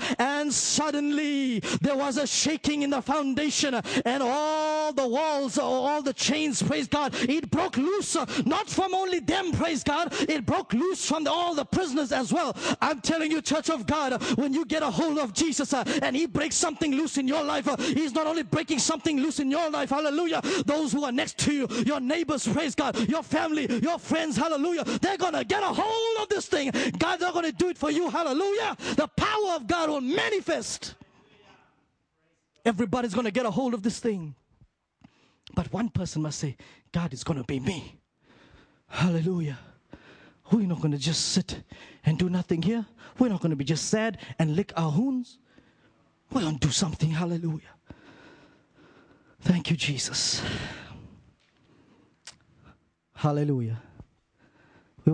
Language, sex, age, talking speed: English, male, 30-49, 170 wpm